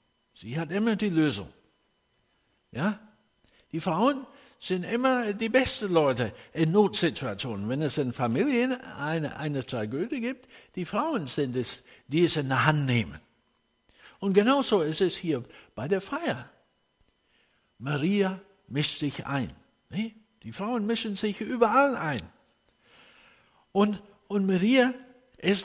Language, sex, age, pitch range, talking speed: German, male, 60-79, 125-210 Hz, 125 wpm